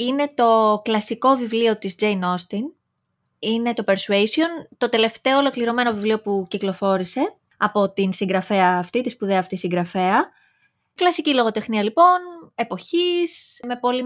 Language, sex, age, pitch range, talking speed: Greek, female, 20-39, 205-275 Hz, 130 wpm